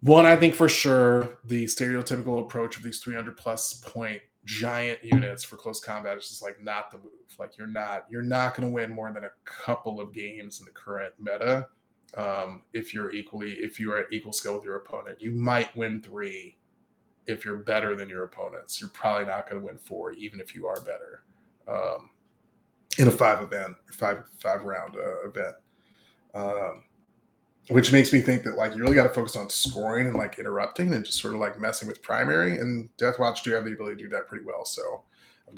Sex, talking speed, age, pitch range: male, 210 wpm, 20-39, 110-125 Hz